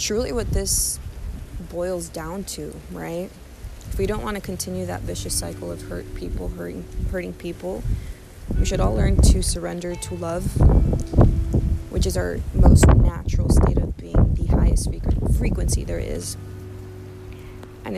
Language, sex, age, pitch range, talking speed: English, female, 20-39, 85-100 Hz, 145 wpm